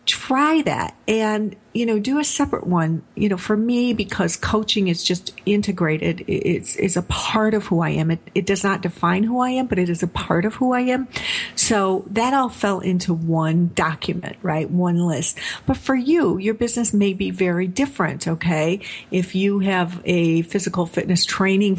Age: 50-69